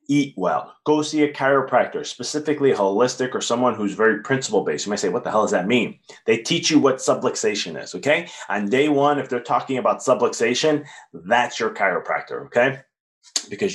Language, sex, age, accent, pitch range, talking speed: English, male, 30-49, American, 110-140 Hz, 185 wpm